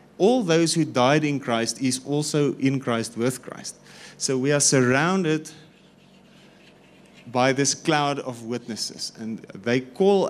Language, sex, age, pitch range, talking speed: English, male, 30-49, 115-155 Hz, 140 wpm